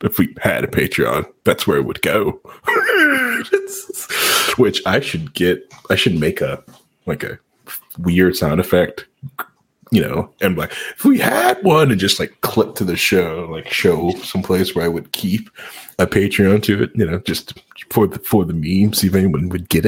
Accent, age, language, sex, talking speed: American, 30-49, English, male, 185 wpm